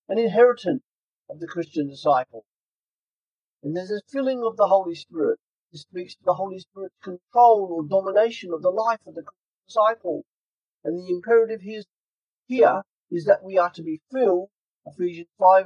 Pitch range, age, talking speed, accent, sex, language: 165-210 Hz, 40-59, 165 wpm, British, male, English